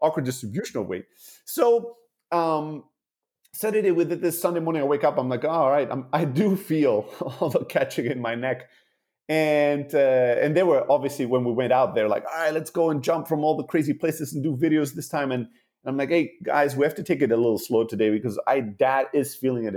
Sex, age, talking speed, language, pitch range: male, 30-49, 235 wpm, English, 130-165 Hz